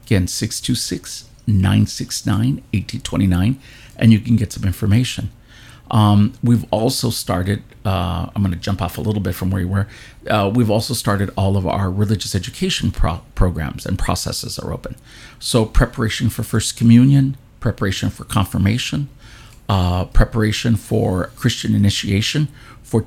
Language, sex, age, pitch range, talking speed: English, male, 50-69, 100-120 Hz, 140 wpm